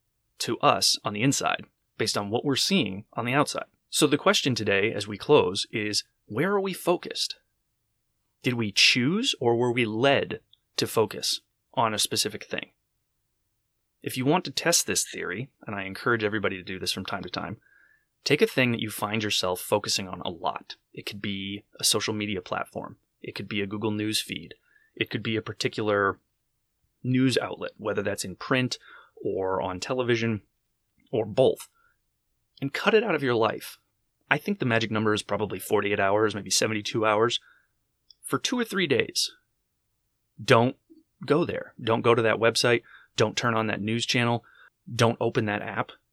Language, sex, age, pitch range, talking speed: English, male, 30-49, 105-135 Hz, 180 wpm